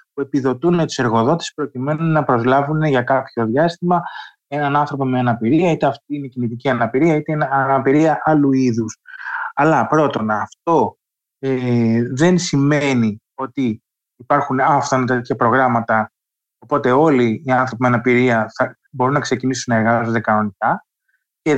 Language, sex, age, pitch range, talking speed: Greek, male, 20-39, 125-160 Hz, 140 wpm